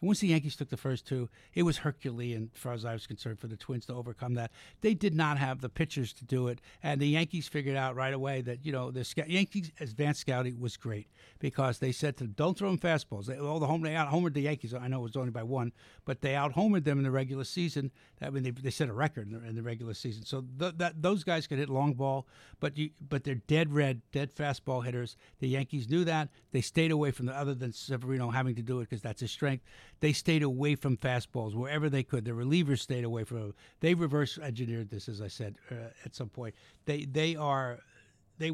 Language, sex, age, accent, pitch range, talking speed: English, male, 60-79, American, 120-150 Hz, 245 wpm